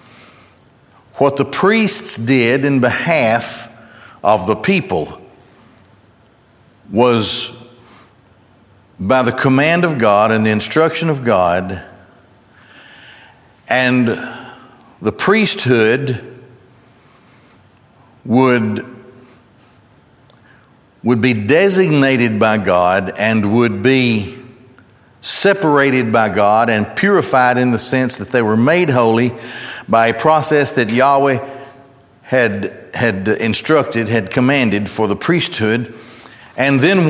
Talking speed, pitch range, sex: 95 wpm, 115-140 Hz, male